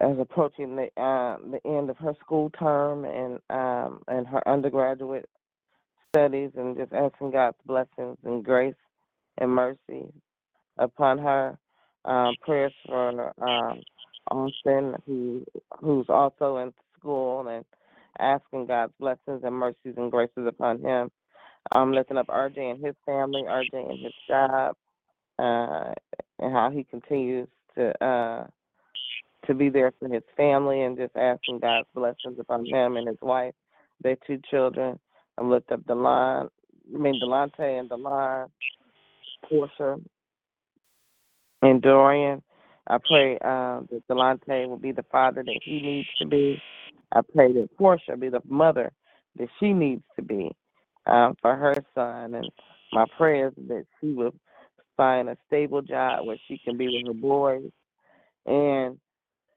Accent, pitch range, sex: American, 125-140 Hz, female